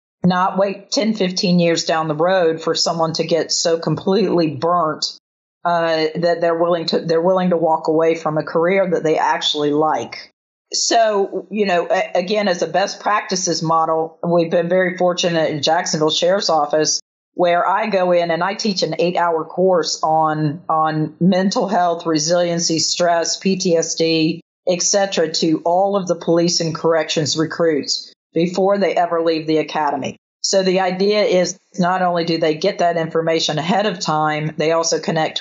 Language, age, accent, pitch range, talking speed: English, 40-59, American, 160-180 Hz, 170 wpm